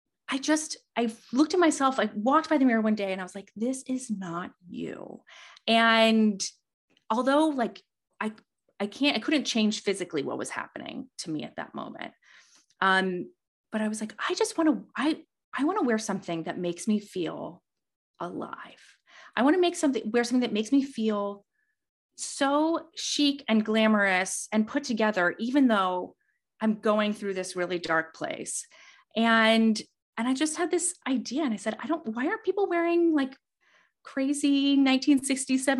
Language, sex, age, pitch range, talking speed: English, female, 30-49, 210-285 Hz, 175 wpm